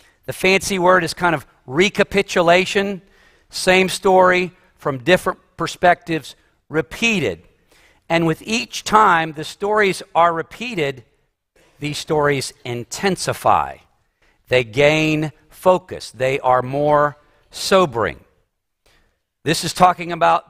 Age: 50-69